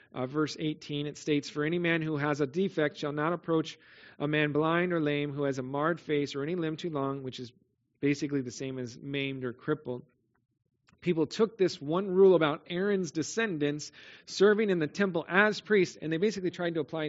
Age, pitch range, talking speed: 40-59, 140-180 Hz, 205 wpm